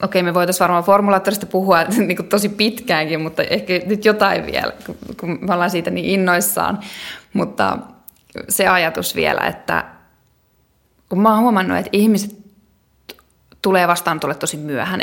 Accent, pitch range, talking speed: native, 155-200 Hz, 140 wpm